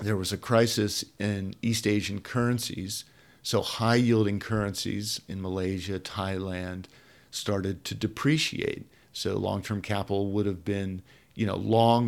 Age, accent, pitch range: 50-69, American, 100-115 Hz